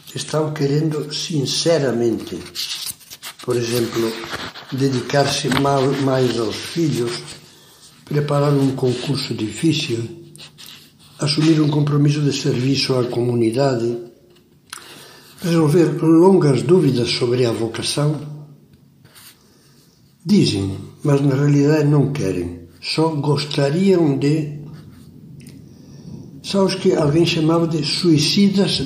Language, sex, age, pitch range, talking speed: Portuguese, male, 60-79, 135-165 Hz, 85 wpm